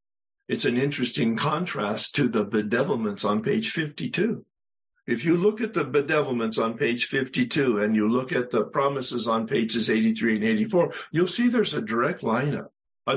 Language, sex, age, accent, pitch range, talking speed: English, male, 60-79, American, 110-180 Hz, 170 wpm